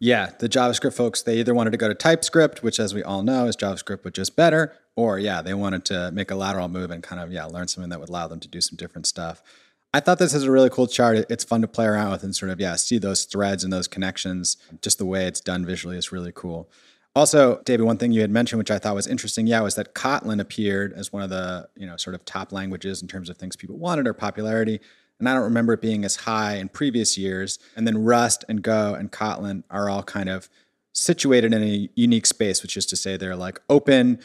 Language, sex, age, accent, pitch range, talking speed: English, male, 30-49, American, 95-115 Hz, 260 wpm